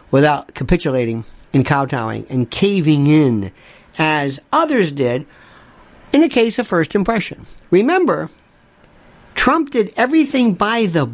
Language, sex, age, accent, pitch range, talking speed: English, male, 50-69, American, 140-185 Hz, 120 wpm